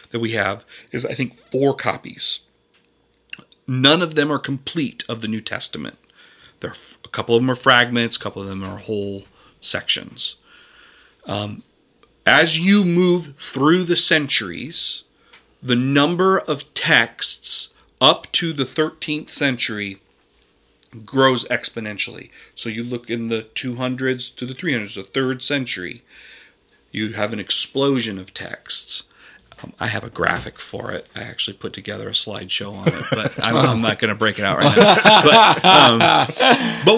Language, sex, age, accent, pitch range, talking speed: English, male, 40-59, American, 115-150 Hz, 155 wpm